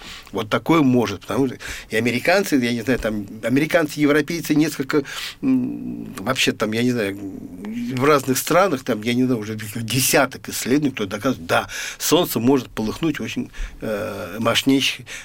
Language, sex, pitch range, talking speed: Russian, male, 115-155 Hz, 145 wpm